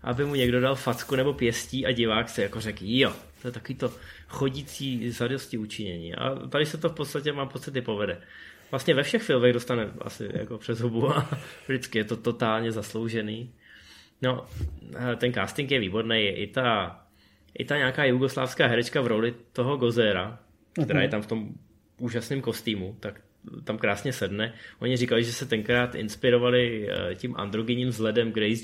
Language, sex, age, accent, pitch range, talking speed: Czech, male, 20-39, native, 110-130 Hz, 170 wpm